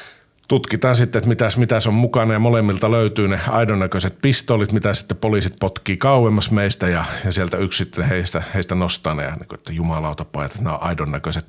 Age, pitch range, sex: 50-69, 90-115 Hz, male